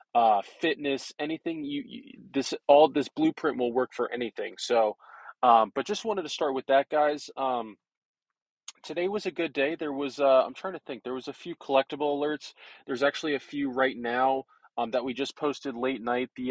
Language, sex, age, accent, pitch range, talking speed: English, male, 20-39, American, 130-145 Hz, 205 wpm